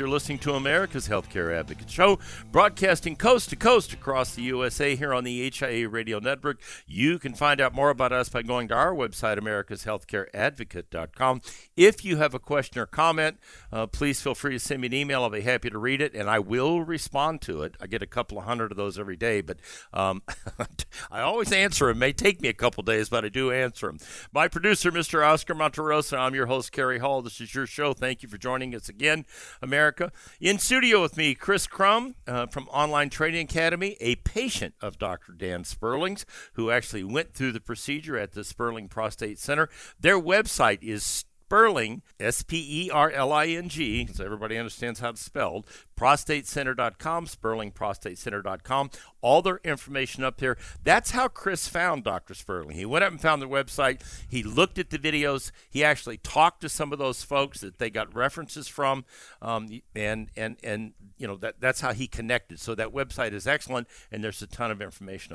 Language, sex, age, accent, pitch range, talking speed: English, male, 60-79, American, 115-150 Hz, 195 wpm